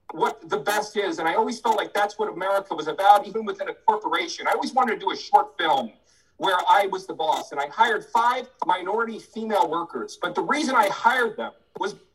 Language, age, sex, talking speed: English, 40-59, male, 220 wpm